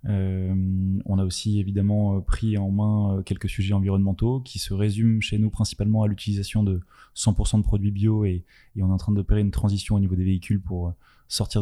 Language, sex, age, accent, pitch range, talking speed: French, male, 20-39, French, 95-110 Hz, 200 wpm